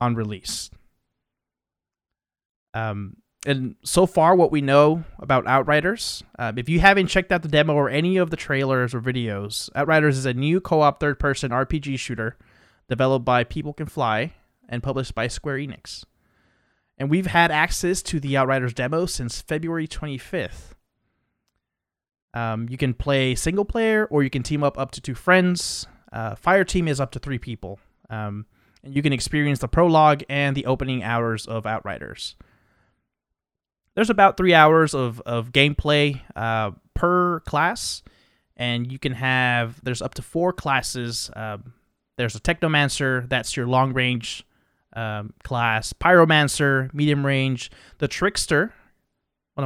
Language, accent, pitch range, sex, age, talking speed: English, American, 120-150 Hz, male, 30-49, 150 wpm